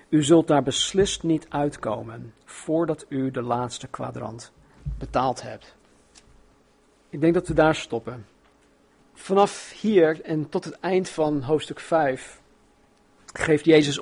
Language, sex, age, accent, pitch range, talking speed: Dutch, male, 50-69, Dutch, 140-175 Hz, 130 wpm